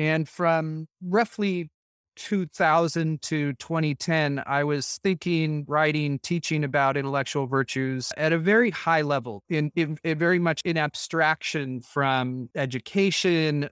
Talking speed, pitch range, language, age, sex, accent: 125 wpm, 145-175 Hz, English, 30-49, male, American